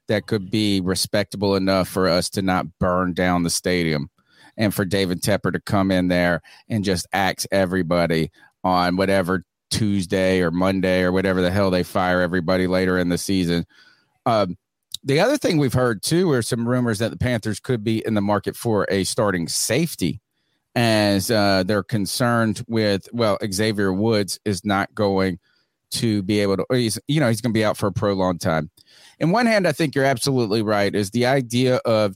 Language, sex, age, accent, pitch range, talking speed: English, male, 30-49, American, 95-120 Hz, 195 wpm